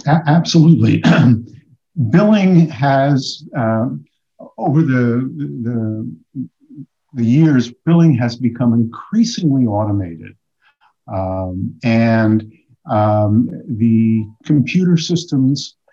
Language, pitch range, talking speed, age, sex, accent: English, 110-135 Hz, 80 wpm, 50-69, male, American